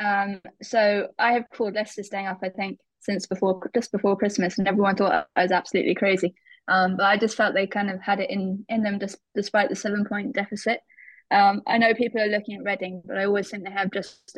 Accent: British